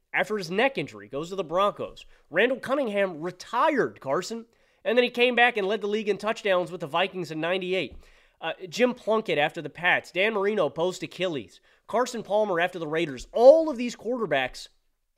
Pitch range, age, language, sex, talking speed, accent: 185-260 Hz, 30-49, English, male, 185 wpm, American